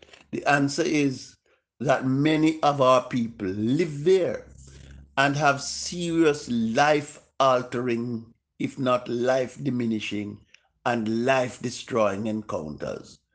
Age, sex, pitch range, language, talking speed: 60-79, male, 115-150 Hz, English, 90 wpm